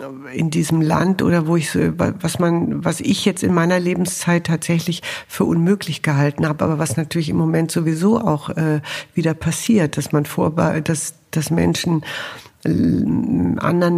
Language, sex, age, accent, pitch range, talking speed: German, female, 60-79, German, 150-170 Hz, 165 wpm